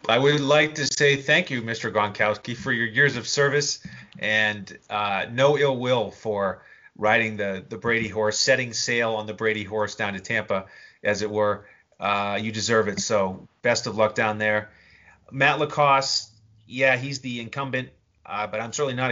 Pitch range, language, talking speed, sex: 105-135 Hz, English, 180 wpm, male